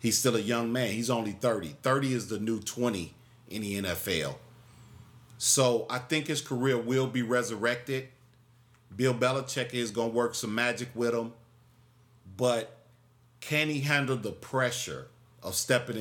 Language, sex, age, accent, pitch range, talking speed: English, male, 40-59, American, 115-130 Hz, 155 wpm